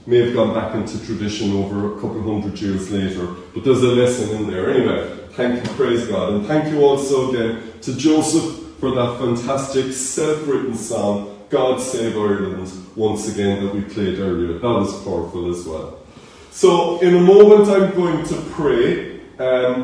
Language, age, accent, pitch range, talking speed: English, 30-49, Irish, 125-180 Hz, 175 wpm